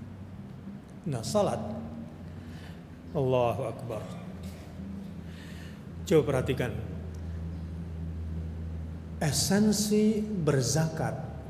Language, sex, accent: Indonesian, male, native